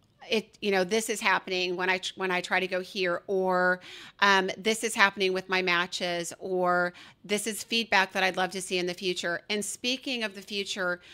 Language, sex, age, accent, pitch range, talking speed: English, female, 40-59, American, 185-220 Hz, 205 wpm